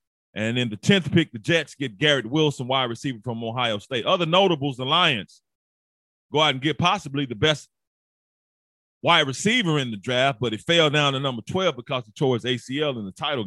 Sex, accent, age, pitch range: male, American, 30-49, 115-165 Hz